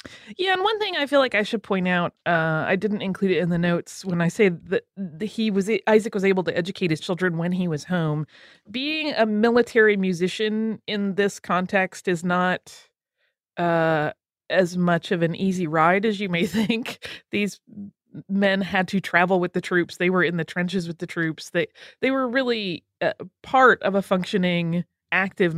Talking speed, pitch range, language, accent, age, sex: 190 wpm, 165-205 Hz, English, American, 30-49, female